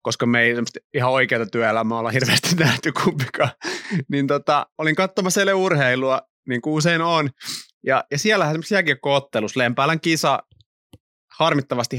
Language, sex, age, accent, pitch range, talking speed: Finnish, male, 30-49, native, 115-145 Hz, 140 wpm